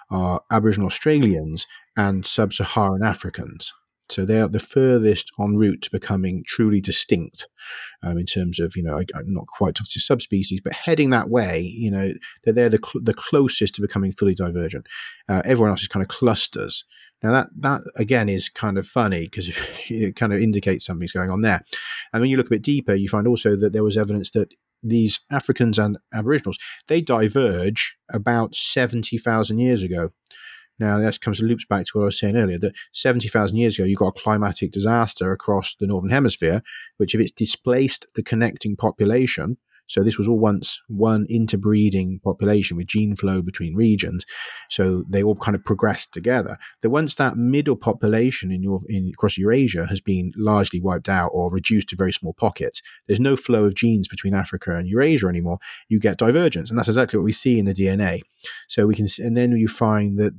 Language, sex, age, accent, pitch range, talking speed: English, male, 40-59, British, 95-115 Hz, 200 wpm